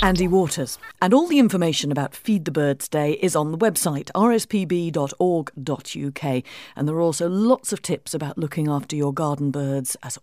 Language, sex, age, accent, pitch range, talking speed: English, female, 50-69, British, 140-215 Hz, 175 wpm